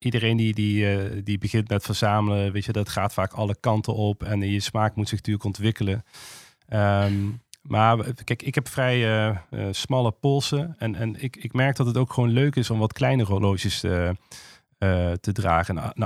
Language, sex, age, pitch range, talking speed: Dutch, male, 40-59, 105-125 Hz, 195 wpm